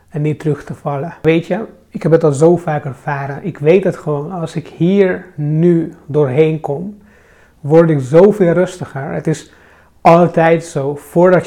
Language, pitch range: English, 145-175 Hz